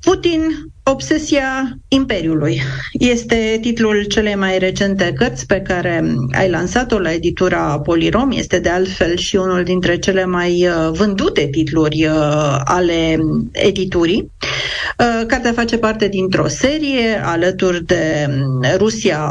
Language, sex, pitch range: Romanian, female, 170-230 Hz